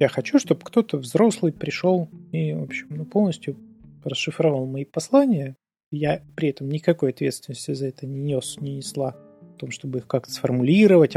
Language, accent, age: Russian, native, 30-49